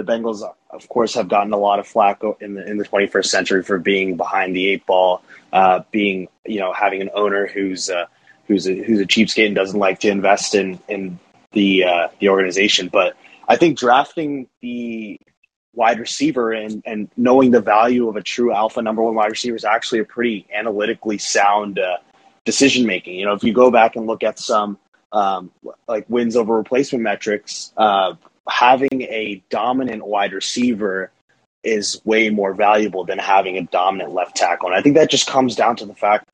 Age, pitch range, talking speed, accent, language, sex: 20-39, 100-115 Hz, 195 wpm, American, English, male